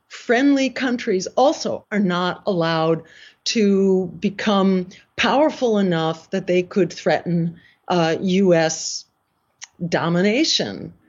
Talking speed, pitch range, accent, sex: 90 wpm, 180-240 Hz, American, female